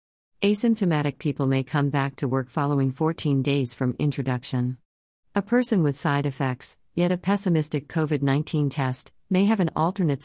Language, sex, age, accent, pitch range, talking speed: English, female, 50-69, American, 130-155 Hz, 150 wpm